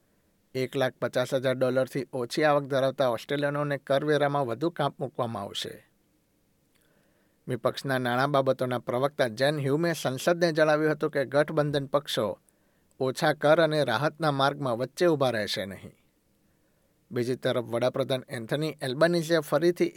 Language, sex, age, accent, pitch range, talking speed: Gujarati, male, 60-79, native, 130-150 Hz, 130 wpm